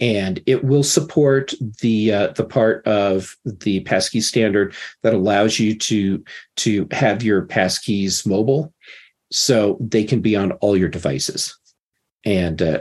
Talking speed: 140 wpm